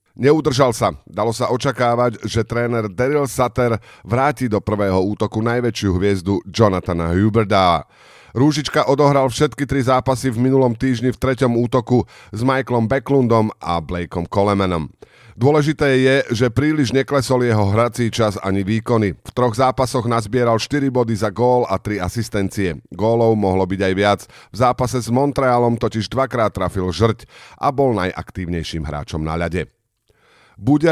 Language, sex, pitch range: Slovak, male, 100-125 Hz